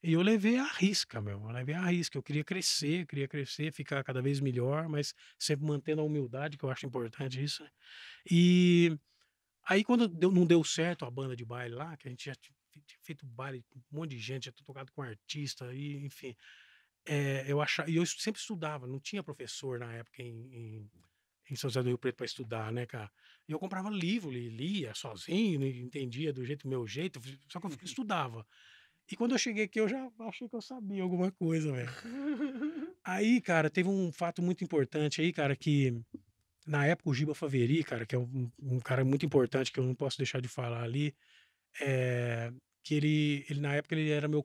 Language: Portuguese